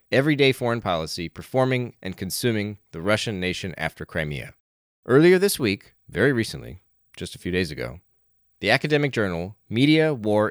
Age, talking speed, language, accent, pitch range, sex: 30-49, 150 wpm, English, American, 90-125 Hz, male